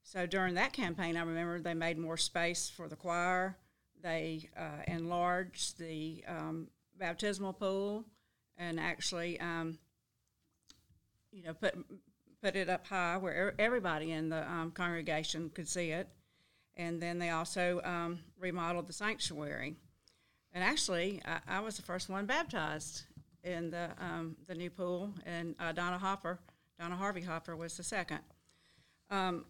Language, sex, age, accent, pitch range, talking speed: English, female, 50-69, American, 165-190 Hz, 150 wpm